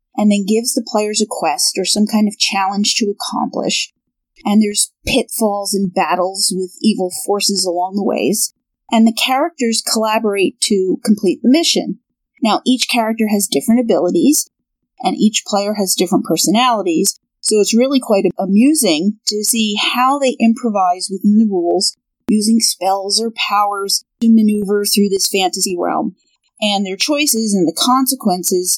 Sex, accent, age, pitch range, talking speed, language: female, American, 40-59, 195-240 Hz, 155 wpm, English